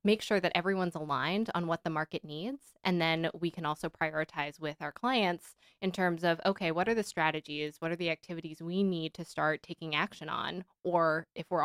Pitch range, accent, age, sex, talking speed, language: 160-185 Hz, American, 20-39, female, 210 wpm, English